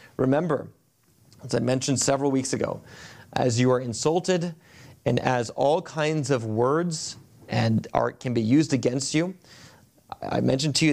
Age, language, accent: 30-49, English, American